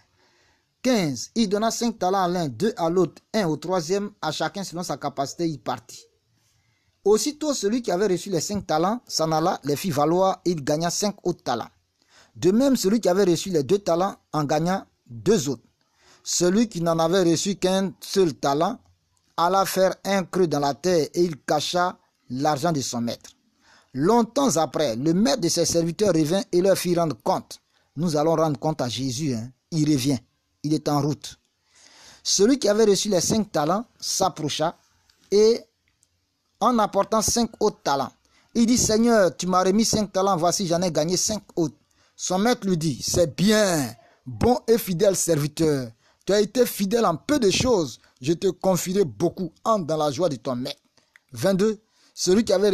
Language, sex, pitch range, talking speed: French, male, 155-205 Hz, 185 wpm